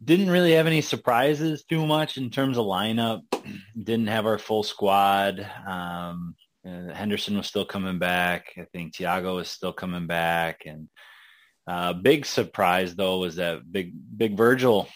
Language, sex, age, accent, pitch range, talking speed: English, male, 20-39, American, 90-115 Hz, 165 wpm